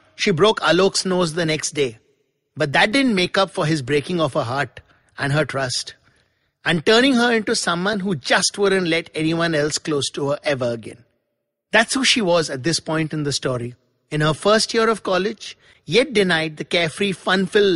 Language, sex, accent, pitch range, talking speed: English, male, Indian, 140-200 Hz, 195 wpm